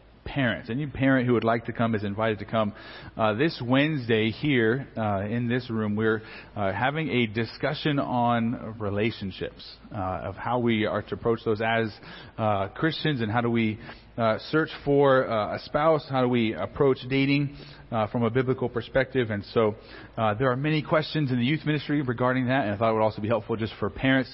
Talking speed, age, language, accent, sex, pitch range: 200 wpm, 30-49, English, American, male, 110-135 Hz